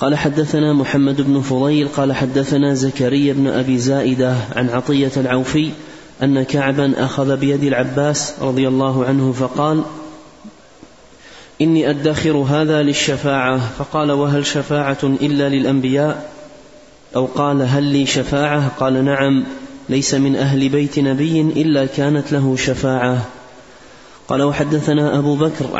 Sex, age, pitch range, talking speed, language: male, 30-49, 135-150 Hz, 120 wpm, Arabic